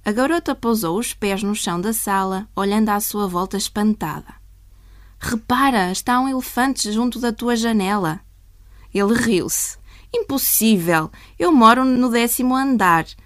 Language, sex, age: Chinese, female, 20-39